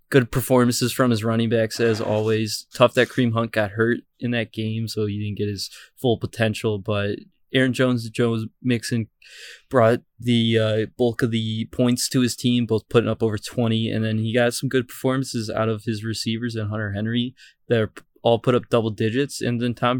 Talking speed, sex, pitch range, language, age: 205 wpm, male, 110-125 Hz, English, 20-39